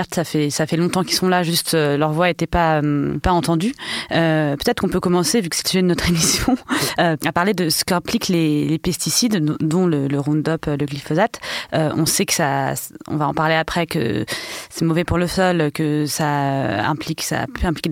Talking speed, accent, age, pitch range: 220 wpm, French, 30-49, 155-185 Hz